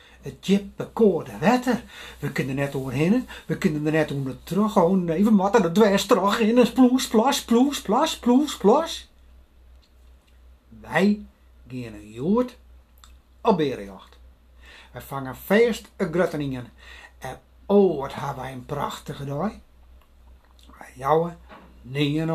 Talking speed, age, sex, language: 140 wpm, 60-79, male, Dutch